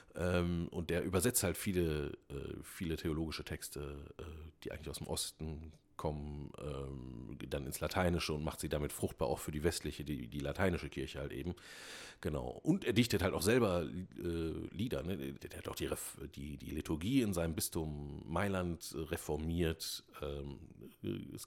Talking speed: 145 wpm